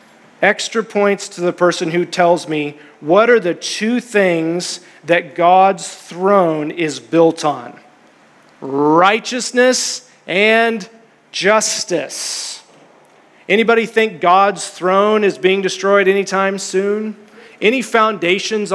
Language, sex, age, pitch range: English, male, 40-59, 170-215 Hz